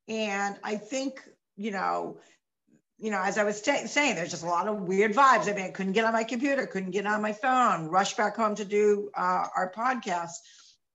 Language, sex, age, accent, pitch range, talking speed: English, female, 50-69, American, 185-225 Hz, 220 wpm